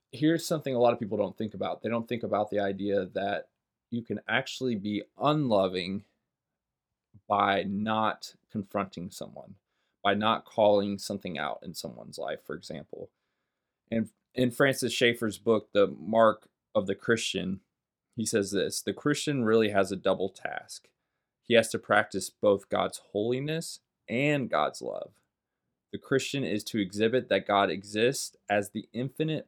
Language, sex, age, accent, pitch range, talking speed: English, male, 20-39, American, 100-130 Hz, 155 wpm